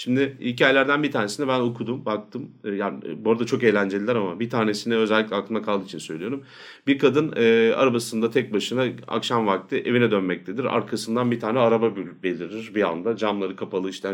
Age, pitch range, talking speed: 40-59, 105-130 Hz, 160 wpm